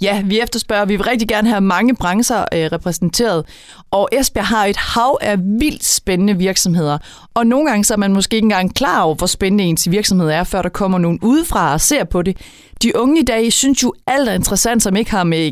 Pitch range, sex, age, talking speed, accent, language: 180-230 Hz, female, 30-49, 230 wpm, native, Danish